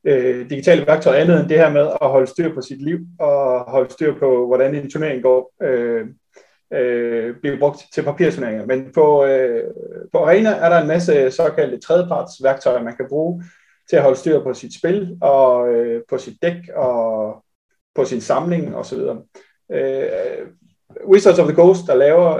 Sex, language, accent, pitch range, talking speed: male, Danish, native, 140-190 Hz, 175 wpm